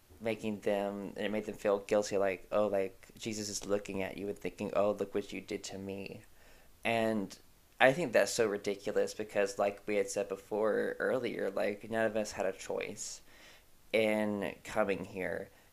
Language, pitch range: English, 100-115 Hz